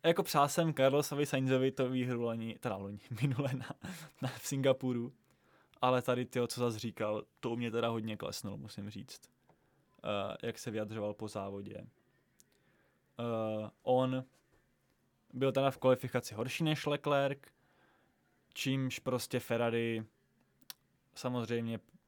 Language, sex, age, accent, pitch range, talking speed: Czech, male, 20-39, native, 115-135 Hz, 130 wpm